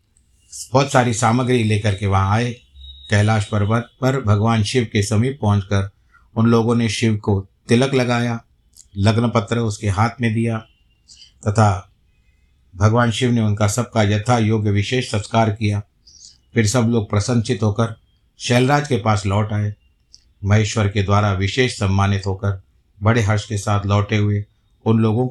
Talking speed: 150 wpm